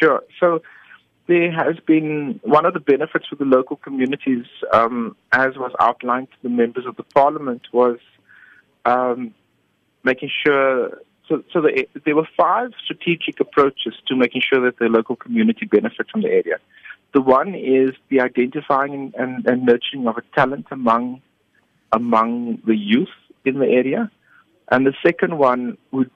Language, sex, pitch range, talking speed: English, male, 120-150 Hz, 155 wpm